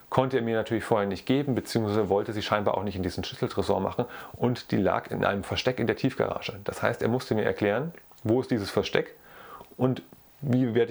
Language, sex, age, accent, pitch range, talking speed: German, male, 30-49, German, 100-115 Hz, 215 wpm